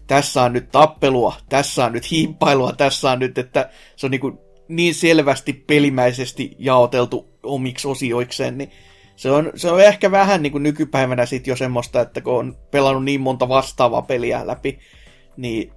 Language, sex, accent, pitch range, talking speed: Finnish, male, native, 125-160 Hz, 165 wpm